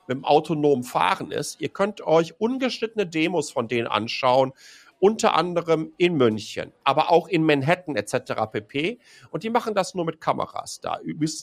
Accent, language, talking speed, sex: German, German, 170 wpm, male